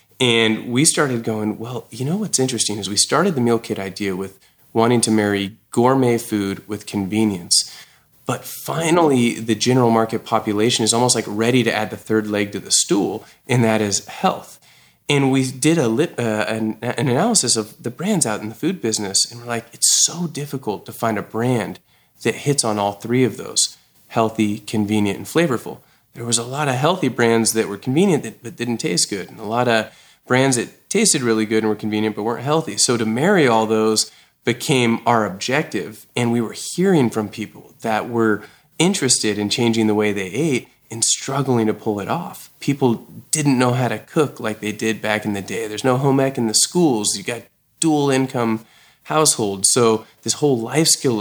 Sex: male